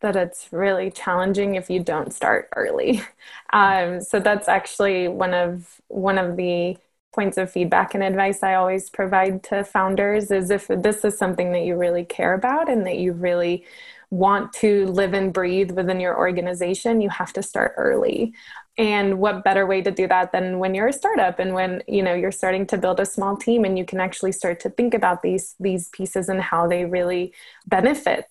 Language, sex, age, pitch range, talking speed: English, female, 20-39, 180-210 Hz, 200 wpm